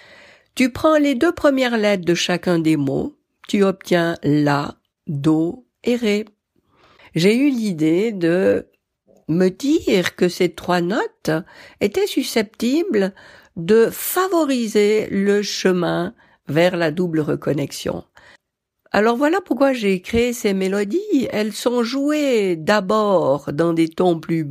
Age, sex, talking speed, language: 60-79, female, 125 wpm, French